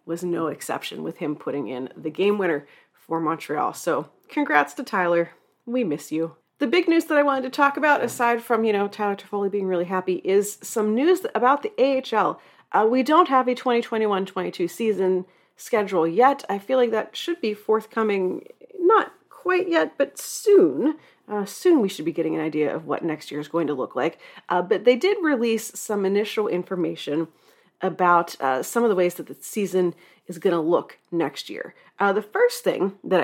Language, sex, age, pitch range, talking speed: English, female, 40-59, 180-250 Hz, 195 wpm